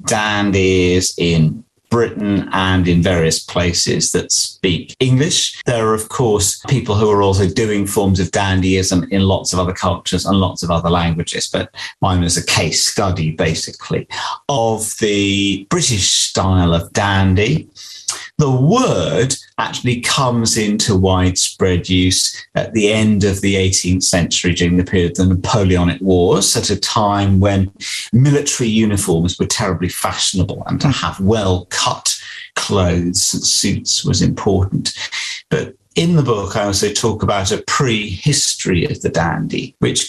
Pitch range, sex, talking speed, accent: 95-115 Hz, male, 145 wpm, British